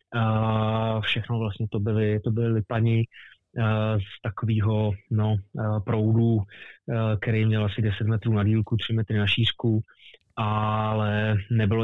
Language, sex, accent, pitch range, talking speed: Czech, male, native, 110-120 Hz, 125 wpm